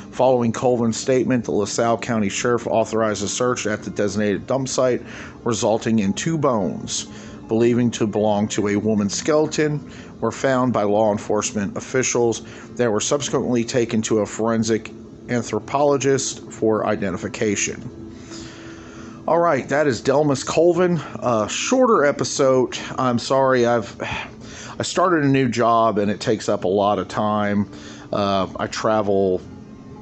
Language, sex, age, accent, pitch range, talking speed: English, male, 40-59, American, 105-130 Hz, 140 wpm